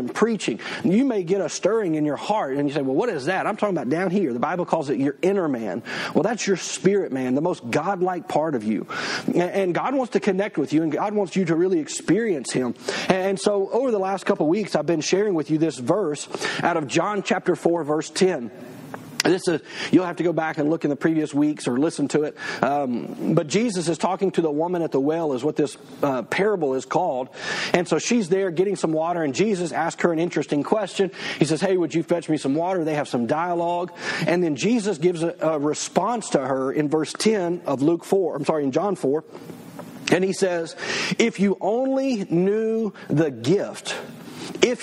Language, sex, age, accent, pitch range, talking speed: English, male, 40-59, American, 155-200 Hz, 225 wpm